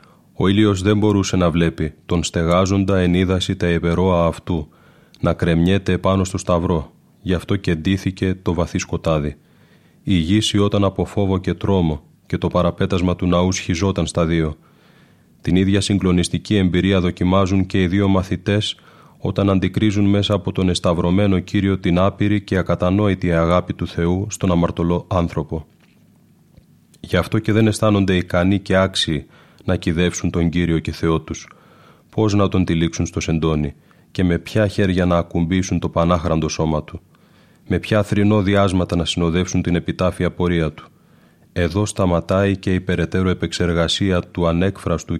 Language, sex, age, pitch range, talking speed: Greek, male, 30-49, 85-95 Hz, 150 wpm